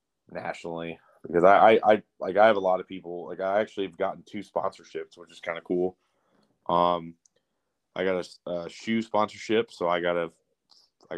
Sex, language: male, English